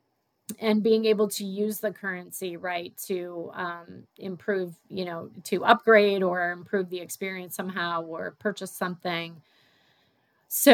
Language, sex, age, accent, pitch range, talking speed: English, female, 30-49, American, 175-200 Hz, 135 wpm